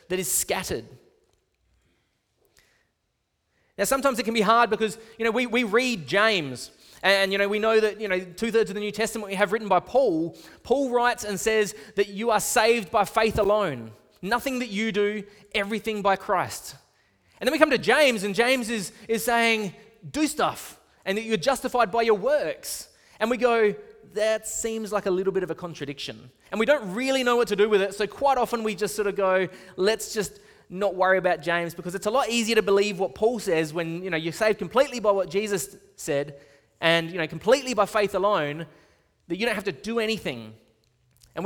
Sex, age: male, 20-39